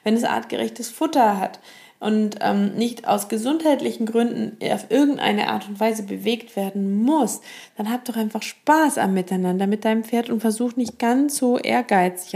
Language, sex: German, female